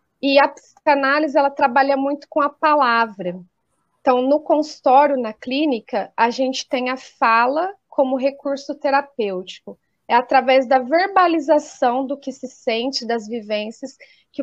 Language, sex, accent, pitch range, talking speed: Portuguese, female, Brazilian, 250-305 Hz, 135 wpm